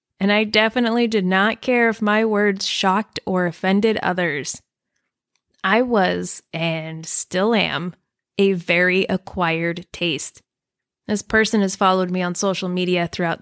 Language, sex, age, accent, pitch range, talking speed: English, female, 20-39, American, 180-220 Hz, 140 wpm